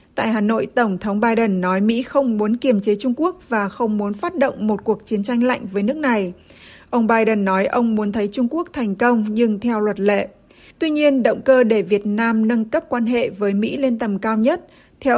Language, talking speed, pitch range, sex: Vietnamese, 235 wpm, 210-250 Hz, female